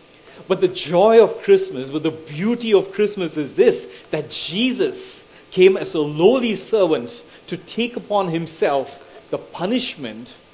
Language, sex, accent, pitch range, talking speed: English, male, Indian, 160-245 Hz, 140 wpm